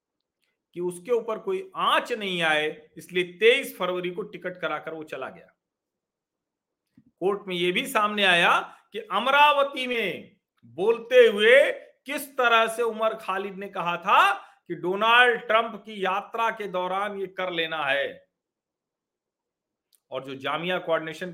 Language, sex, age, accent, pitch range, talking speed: Hindi, male, 50-69, native, 180-260 Hz, 140 wpm